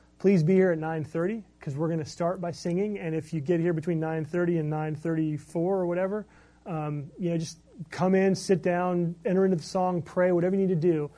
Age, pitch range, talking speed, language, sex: 30-49, 145-180 Hz, 220 wpm, English, male